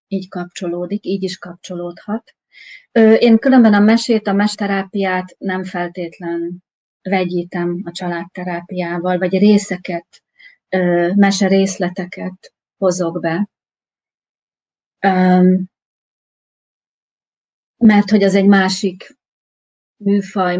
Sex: female